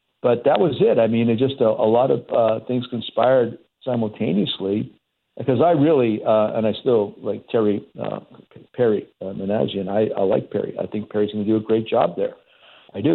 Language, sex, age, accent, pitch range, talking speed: English, male, 60-79, American, 105-120 Hz, 210 wpm